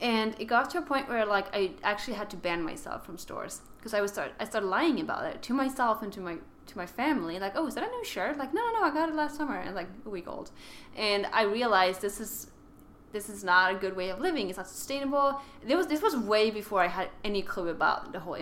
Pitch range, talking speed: 190-260 Hz, 270 wpm